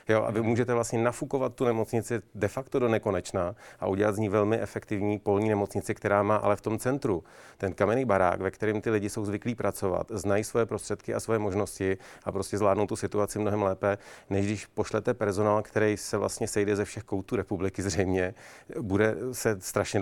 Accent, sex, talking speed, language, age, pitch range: native, male, 195 wpm, Czech, 40-59, 100-110 Hz